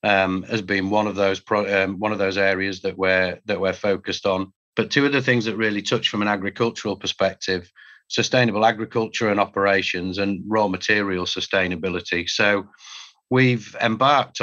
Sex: male